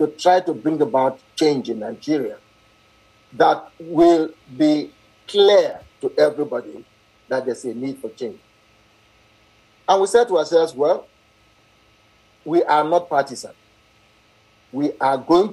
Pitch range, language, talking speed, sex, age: 110-180 Hz, English, 130 wpm, male, 50-69